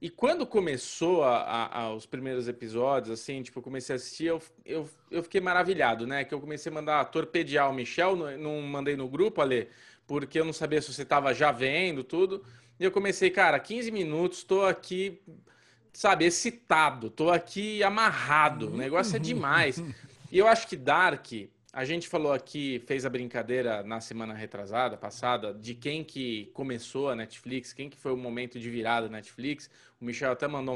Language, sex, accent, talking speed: Portuguese, male, Brazilian, 190 wpm